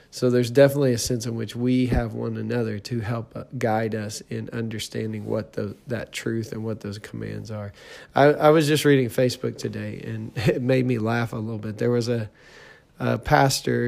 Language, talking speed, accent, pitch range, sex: English, 200 wpm, American, 110-130 Hz, male